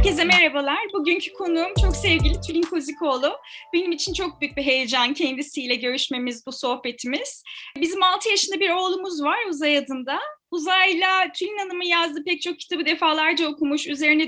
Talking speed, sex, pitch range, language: 155 wpm, female, 290-345 Hz, Turkish